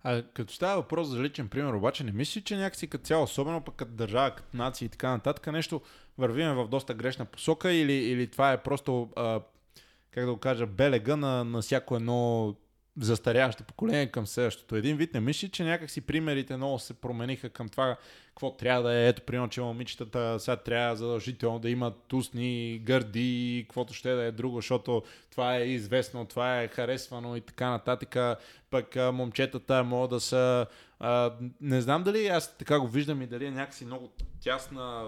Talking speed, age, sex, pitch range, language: 190 wpm, 20-39, male, 120-135 Hz, Bulgarian